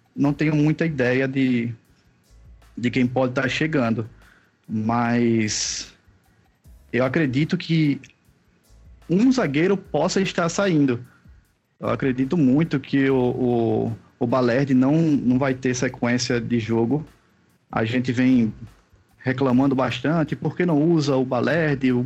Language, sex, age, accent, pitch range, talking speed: Portuguese, male, 20-39, Brazilian, 120-145 Hz, 120 wpm